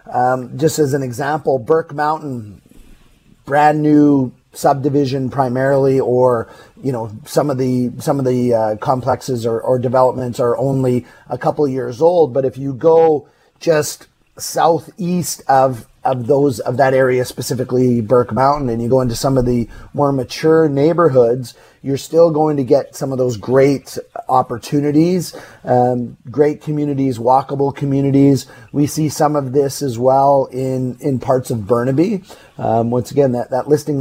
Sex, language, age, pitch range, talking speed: male, English, 30-49, 125-145 Hz, 160 wpm